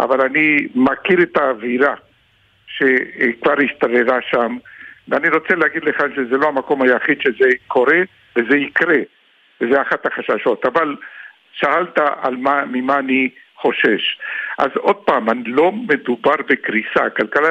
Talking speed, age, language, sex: 130 wpm, 60-79, Hebrew, male